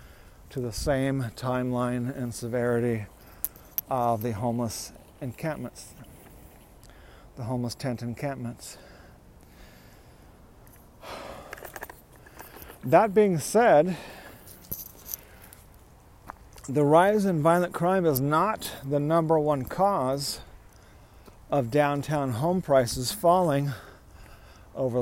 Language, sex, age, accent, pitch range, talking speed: English, male, 40-59, American, 100-145 Hz, 80 wpm